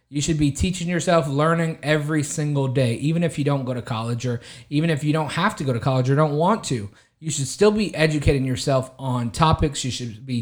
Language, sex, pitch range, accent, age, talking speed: English, male, 125-165 Hz, American, 20-39, 235 wpm